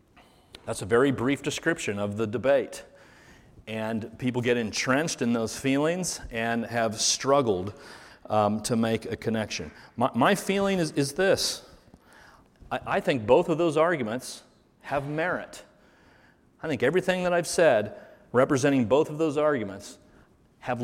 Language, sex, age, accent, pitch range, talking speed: English, male, 40-59, American, 120-155 Hz, 145 wpm